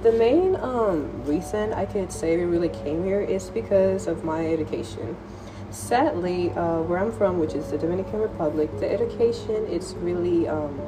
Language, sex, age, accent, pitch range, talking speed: English, female, 20-39, American, 150-190 Hz, 170 wpm